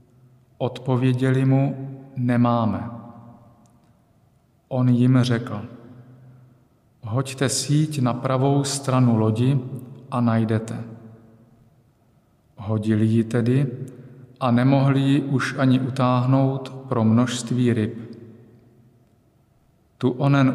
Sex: male